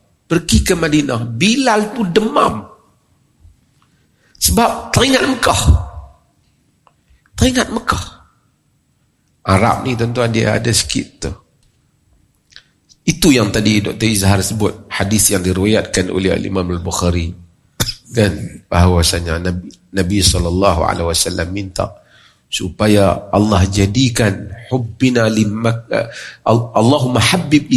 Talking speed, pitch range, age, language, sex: 95 wpm, 95-150 Hz, 50-69, Malay, male